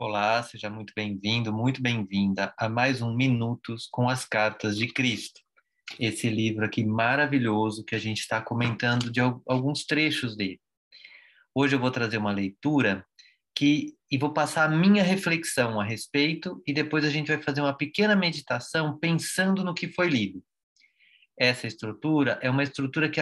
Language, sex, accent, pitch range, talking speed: Portuguese, male, Brazilian, 120-160 Hz, 165 wpm